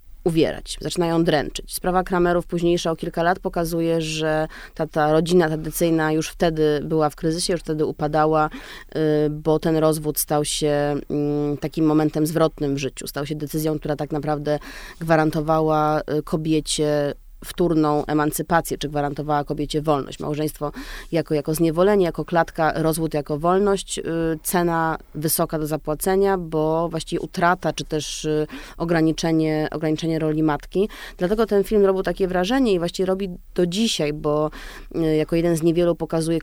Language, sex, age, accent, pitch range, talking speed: Polish, female, 20-39, native, 150-175 Hz, 140 wpm